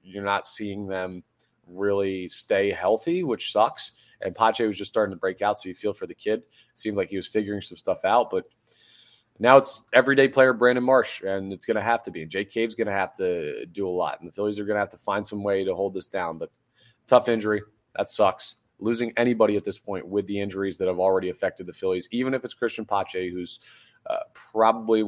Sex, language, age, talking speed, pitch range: male, English, 20-39, 230 wpm, 95-120 Hz